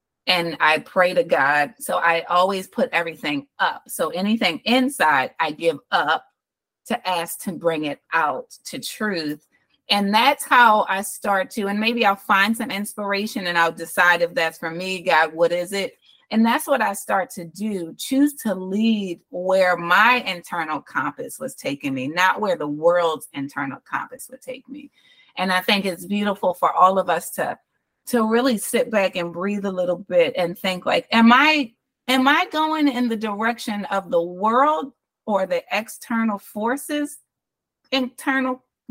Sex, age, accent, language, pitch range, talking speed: female, 30-49, American, English, 180-255 Hz, 175 wpm